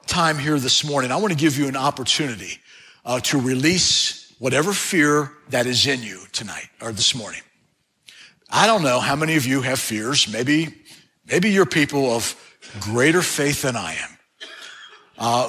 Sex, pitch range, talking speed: male, 125-150 Hz, 170 wpm